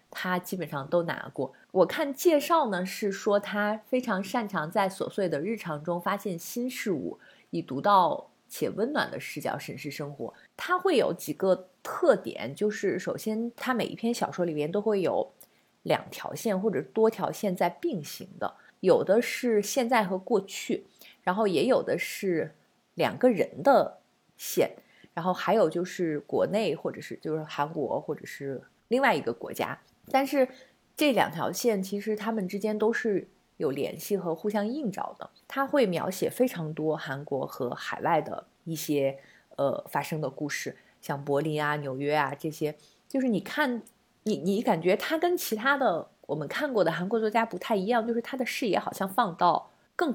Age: 30-49